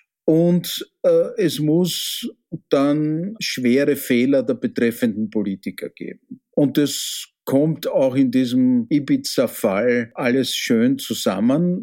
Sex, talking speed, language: male, 105 wpm, German